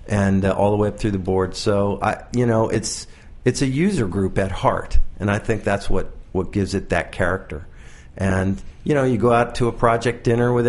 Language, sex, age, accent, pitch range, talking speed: English, male, 50-69, American, 95-125 Hz, 230 wpm